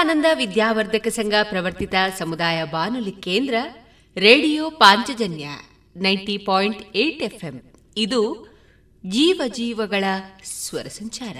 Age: 30-49